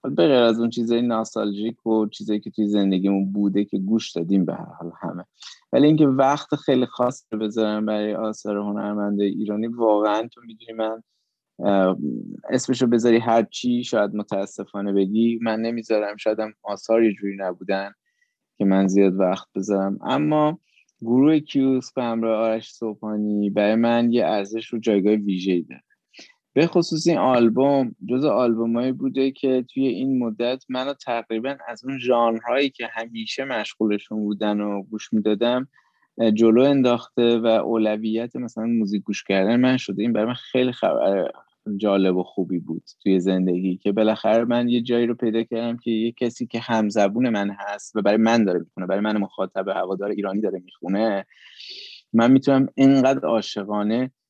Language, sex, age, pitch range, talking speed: Persian, male, 20-39, 105-120 Hz, 155 wpm